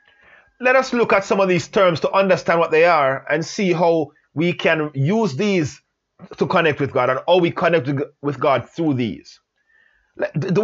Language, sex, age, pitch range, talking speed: English, male, 30-49, 170-220 Hz, 185 wpm